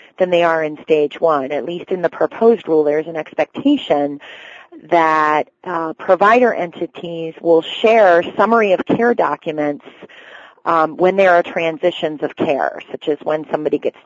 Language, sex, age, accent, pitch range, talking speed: English, female, 30-49, American, 155-195 Hz, 160 wpm